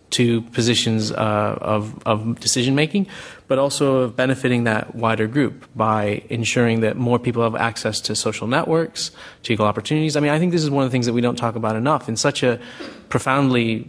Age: 30-49